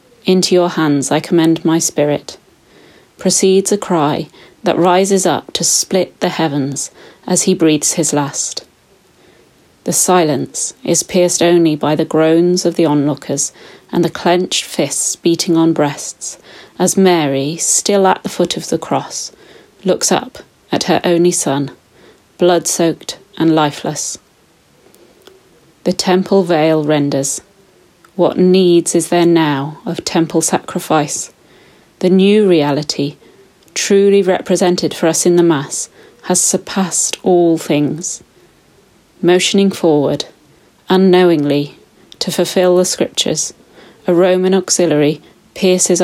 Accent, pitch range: British, 155-180 Hz